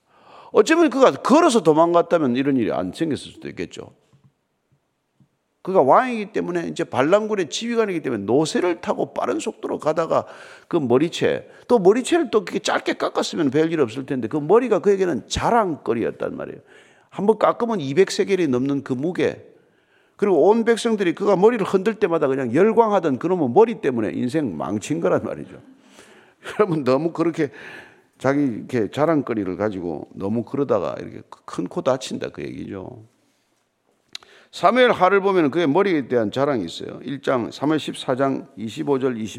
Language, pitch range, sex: Korean, 140-225 Hz, male